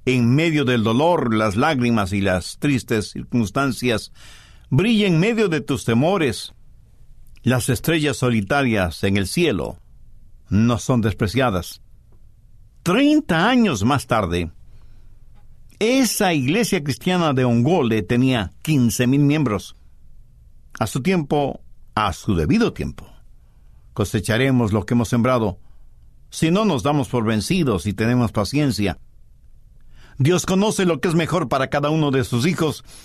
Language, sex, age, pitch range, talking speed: English, male, 60-79, 110-160 Hz, 130 wpm